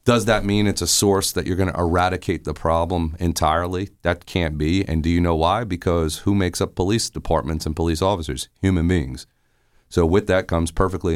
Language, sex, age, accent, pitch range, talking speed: English, male, 40-59, American, 80-95 Hz, 205 wpm